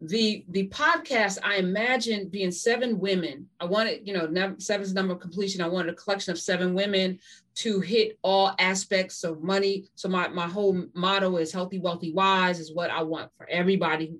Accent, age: American, 30-49